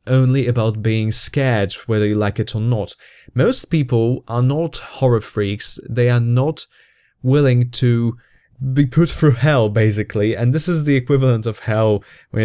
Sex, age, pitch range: male, 20-39, 110-130 Hz